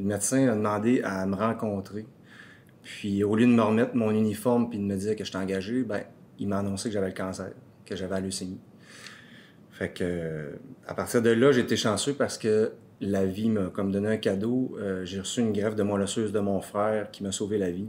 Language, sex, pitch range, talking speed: French, male, 95-110 Hz, 225 wpm